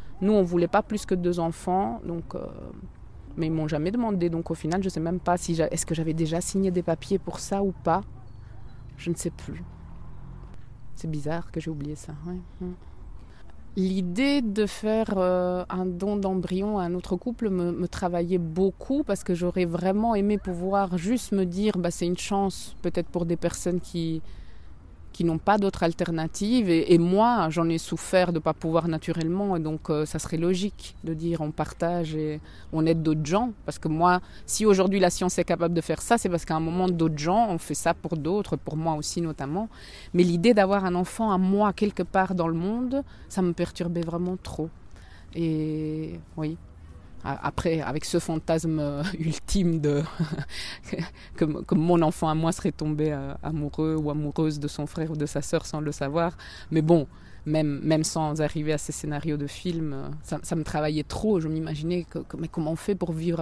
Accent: French